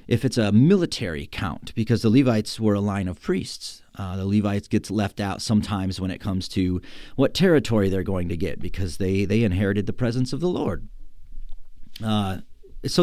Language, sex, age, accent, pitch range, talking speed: English, male, 40-59, American, 100-130 Hz, 190 wpm